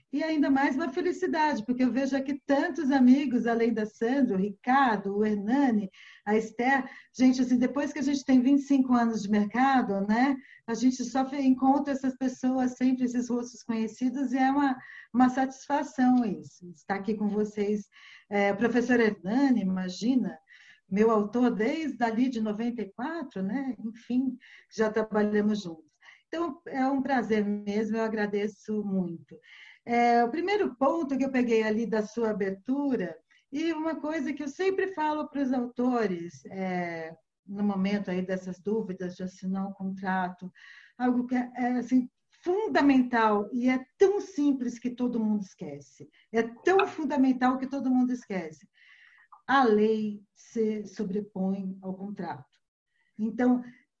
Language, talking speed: Portuguese, 140 wpm